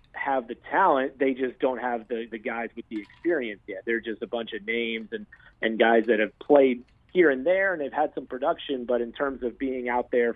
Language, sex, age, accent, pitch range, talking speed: English, male, 40-59, American, 115-130 Hz, 240 wpm